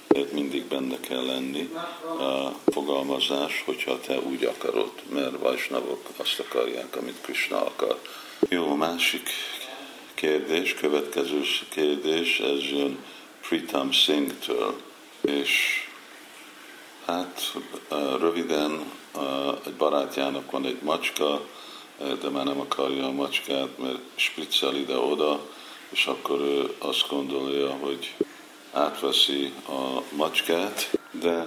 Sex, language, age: male, Hungarian, 50-69